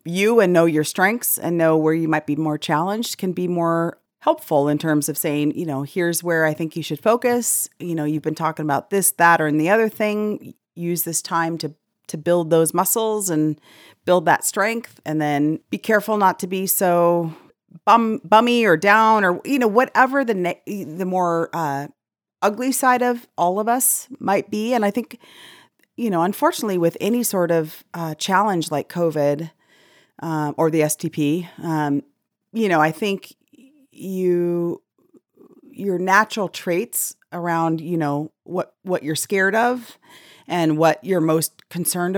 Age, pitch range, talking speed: 30-49, 160-215 Hz, 175 wpm